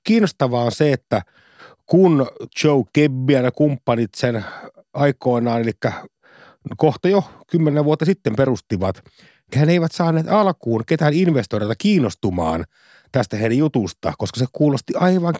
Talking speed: 130 wpm